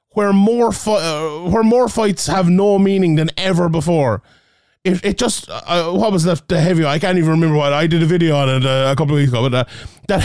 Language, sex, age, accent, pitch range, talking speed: English, male, 30-49, Irish, 160-195 Hz, 230 wpm